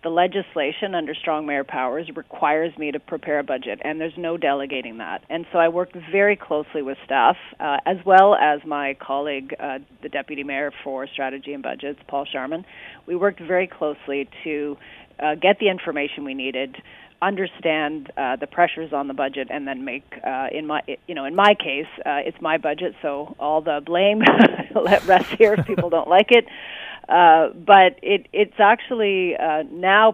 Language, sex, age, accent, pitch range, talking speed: English, female, 40-59, American, 145-180 Hz, 185 wpm